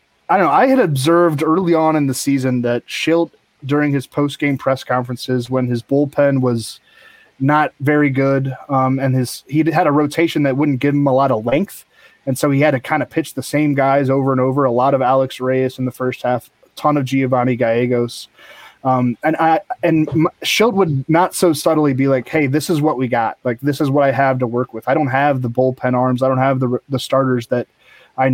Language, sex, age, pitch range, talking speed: English, male, 20-39, 130-155 Hz, 230 wpm